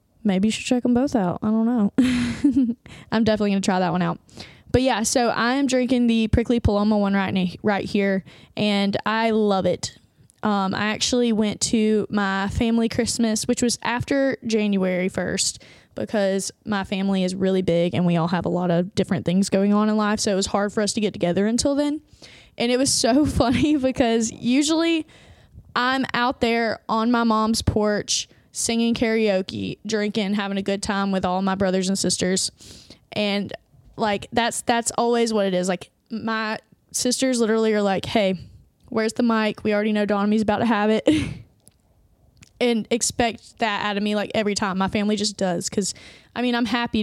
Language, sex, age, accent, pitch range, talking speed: English, female, 20-39, American, 195-235 Hz, 190 wpm